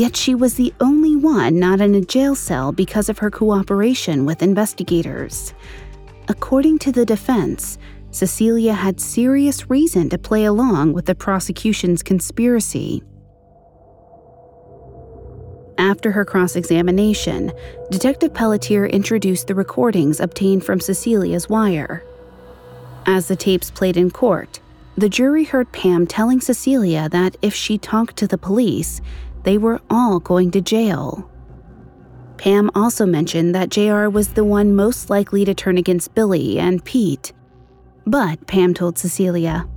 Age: 30-49